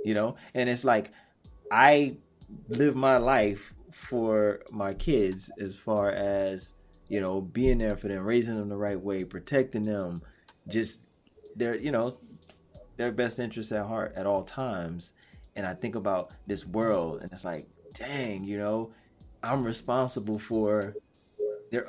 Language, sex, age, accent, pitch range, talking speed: English, male, 20-39, American, 100-130 Hz, 155 wpm